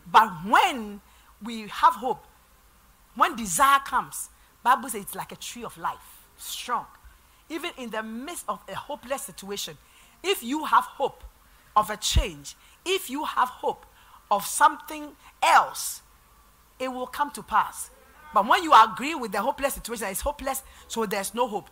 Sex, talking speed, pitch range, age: female, 160 wpm, 215-285 Hz, 50-69